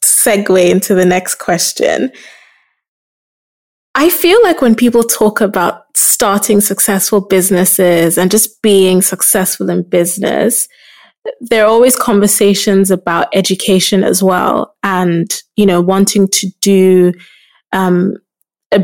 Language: English